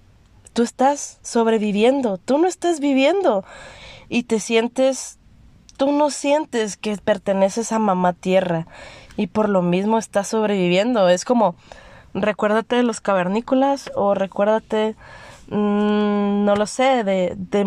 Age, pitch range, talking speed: 20-39, 190-240 Hz, 130 wpm